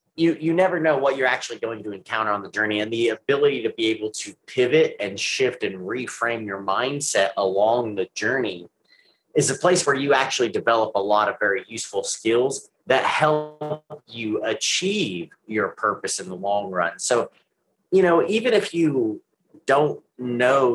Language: English